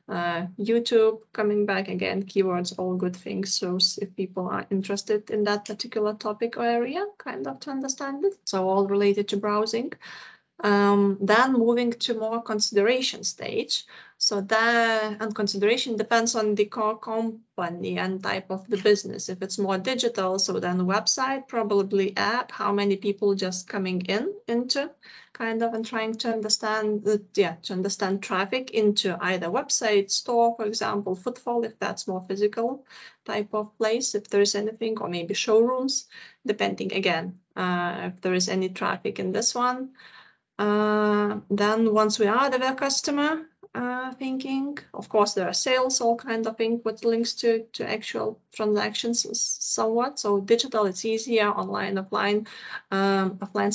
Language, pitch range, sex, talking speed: English, 200-235 Hz, female, 160 wpm